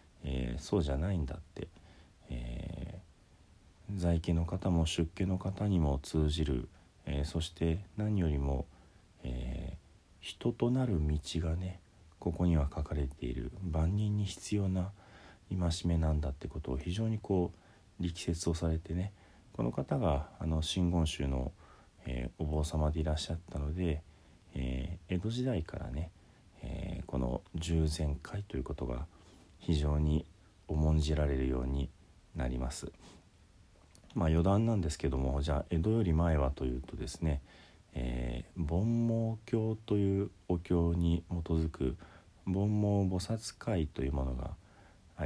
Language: Japanese